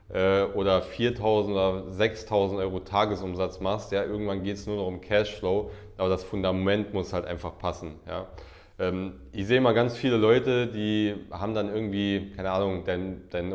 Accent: German